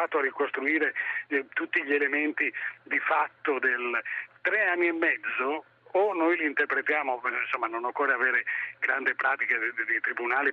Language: Italian